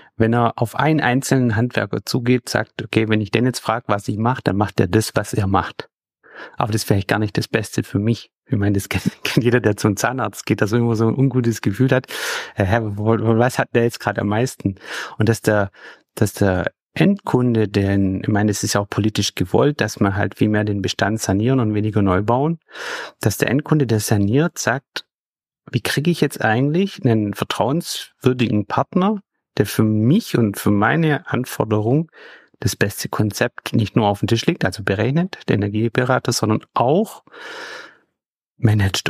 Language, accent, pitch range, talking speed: German, German, 105-130 Hz, 185 wpm